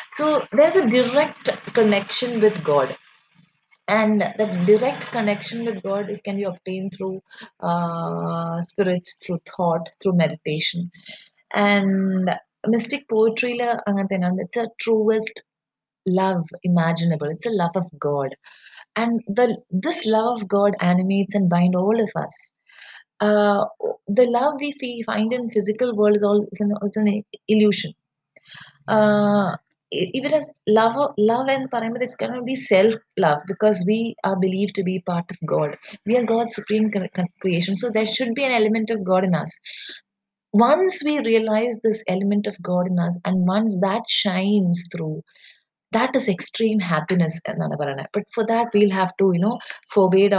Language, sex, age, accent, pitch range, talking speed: English, female, 30-49, Indian, 180-225 Hz, 150 wpm